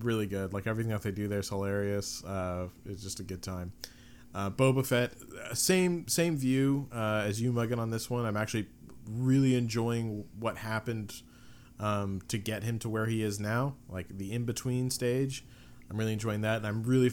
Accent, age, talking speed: American, 30-49, 195 wpm